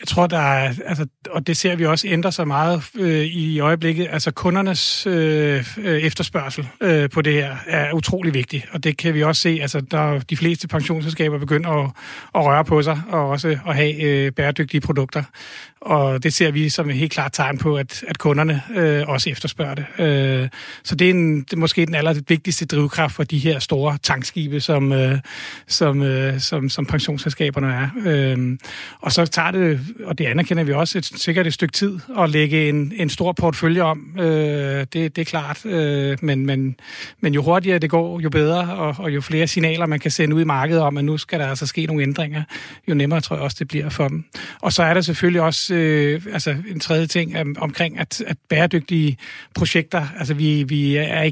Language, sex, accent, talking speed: Danish, male, native, 210 wpm